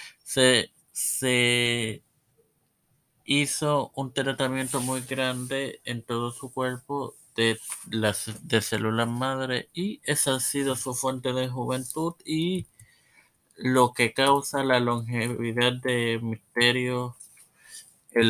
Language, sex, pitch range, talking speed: Spanish, male, 115-135 Hz, 110 wpm